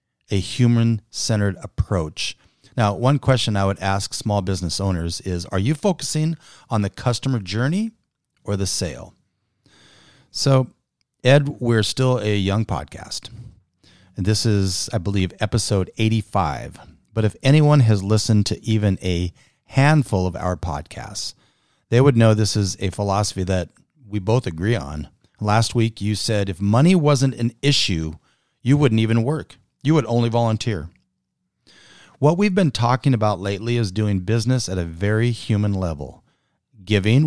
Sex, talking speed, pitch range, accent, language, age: male, 150 wpm, 95-125 Hz, American, English, 40-59